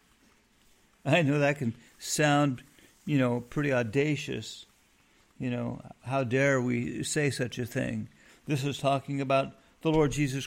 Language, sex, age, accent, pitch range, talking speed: English, male, 50-69, American, 120-150 Hz, 145 wpm